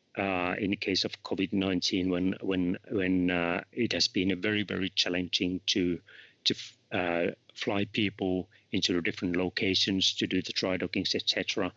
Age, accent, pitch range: 30-49, Finnish, 95-105 Hz